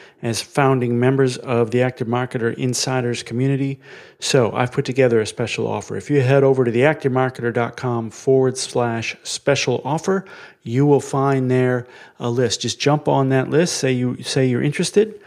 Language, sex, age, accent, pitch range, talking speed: English, male, 30-49, American, 115-140 Hz, 165 wpm